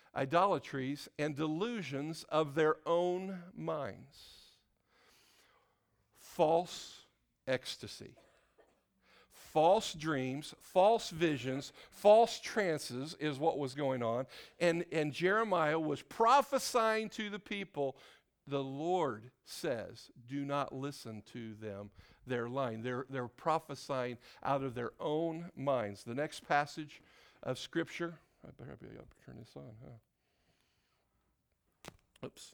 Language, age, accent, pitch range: English, 50-69, American, 130-175 Hz